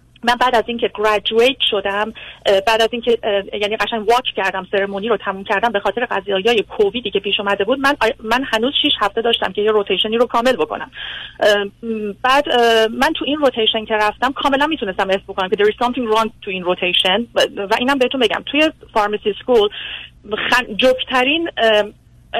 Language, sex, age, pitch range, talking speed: Persian, female, 30-49, 200-250 Hz, 170 wpm